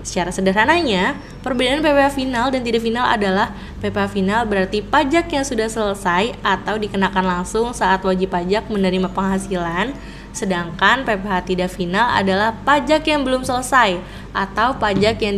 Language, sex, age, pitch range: Indonesian, female, 20-39, 190-240 Hz